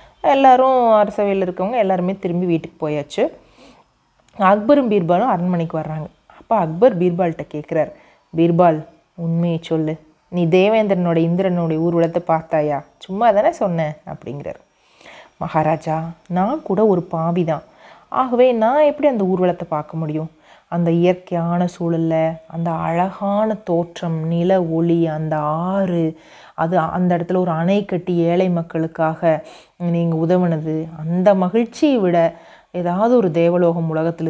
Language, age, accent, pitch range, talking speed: Tamil, 30-49, native, 160-185 Hz, 115 wpm